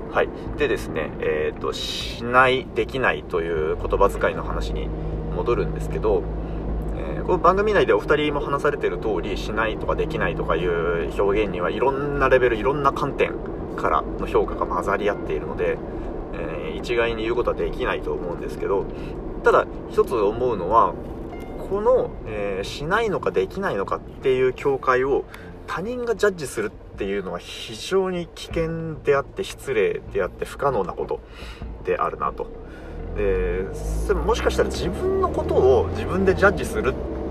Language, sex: Japanese, male